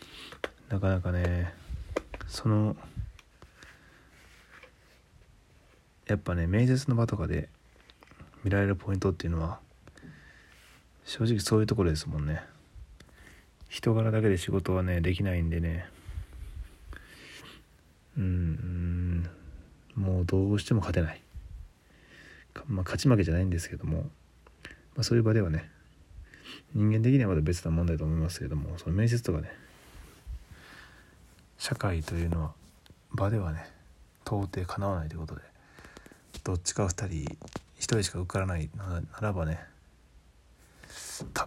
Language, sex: Japanese, male